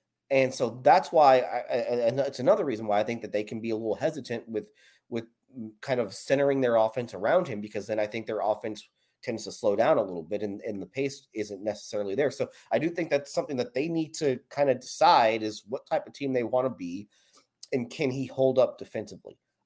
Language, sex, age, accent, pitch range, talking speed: English, male, 30-49, American, 115-145 Hz, 235 wpm